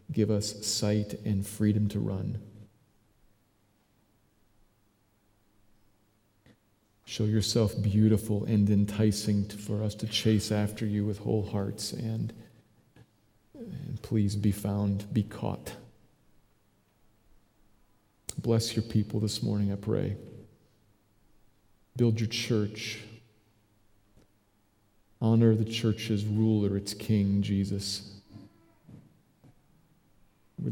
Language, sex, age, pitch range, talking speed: English, male, 40-59, 105-120 Hz, 90 wpm